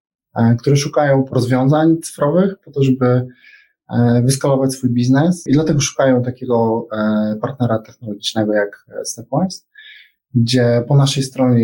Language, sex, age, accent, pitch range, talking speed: Polish, male, 20-39, native, 110-130 Hz, 115 wpm